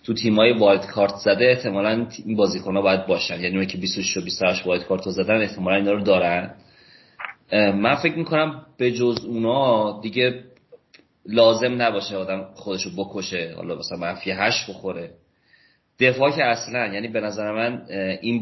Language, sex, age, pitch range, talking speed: Persian, male, 30-49, 95-110 Hz, 165 wpm